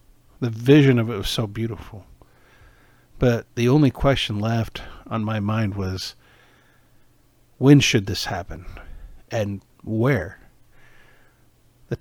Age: 50-69